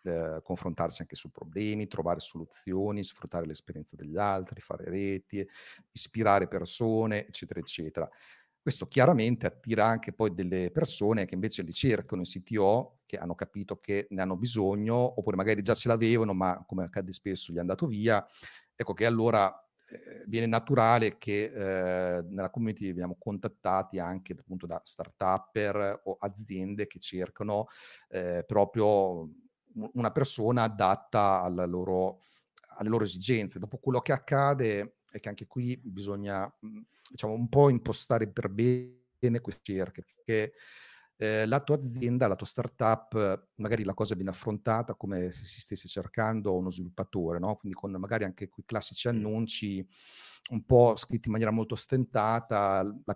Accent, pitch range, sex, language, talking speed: native, 95-115 Hz, male, Italian, 150 wpm